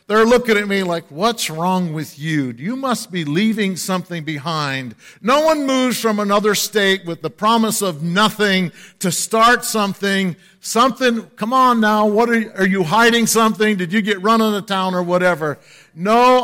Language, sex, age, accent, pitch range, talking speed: English, male, 50-69, American, 180-230 Hz, 185 wpm